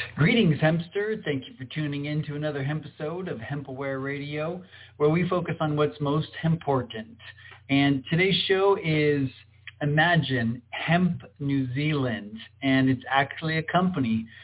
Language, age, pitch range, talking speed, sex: English, 40-59, 130-155 Hz, 140 wpm, male